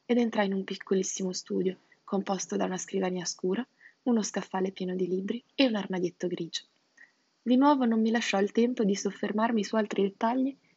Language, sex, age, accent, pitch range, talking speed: Italian, female, 20-39, native, 185-230 Hz, 180 wpm